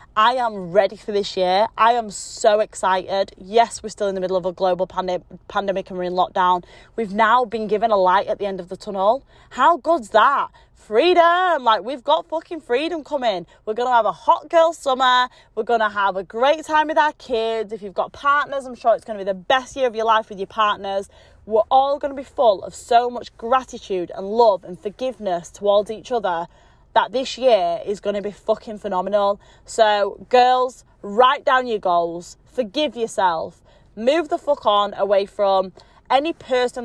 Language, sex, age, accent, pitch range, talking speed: English, female, 20-39, British, 200-265 Hz, 205 wpm